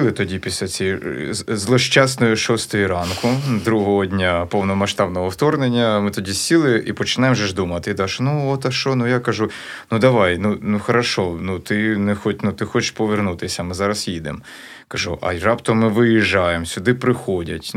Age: 20-39